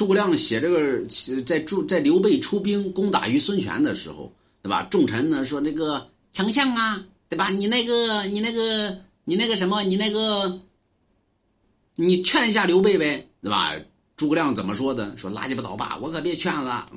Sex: male